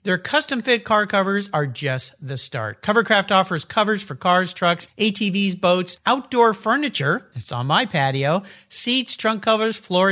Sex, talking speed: male, 155 wpm